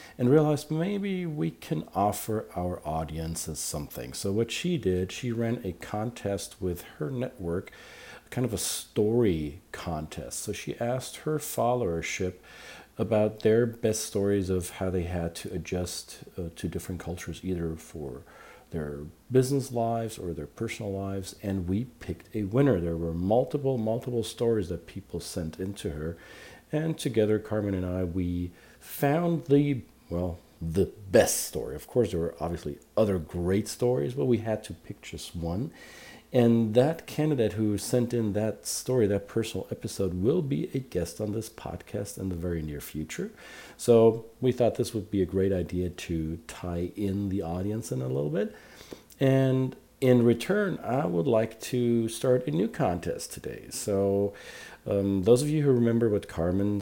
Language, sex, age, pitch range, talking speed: English, male, 50-69, 90-115 Hz, 165 wpm